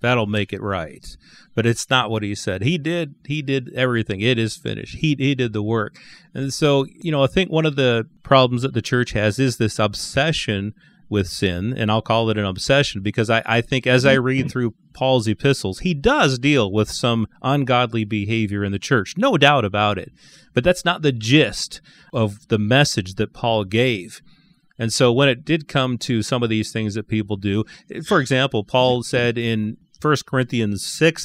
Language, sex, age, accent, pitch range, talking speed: English, male, 30-49, American, 110-140 Hz, 200 wpm